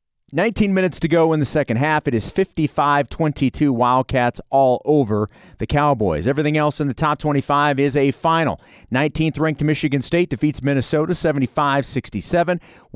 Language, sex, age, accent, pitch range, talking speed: English, male, 40-59, American, 130-175 Hz, 145 wpm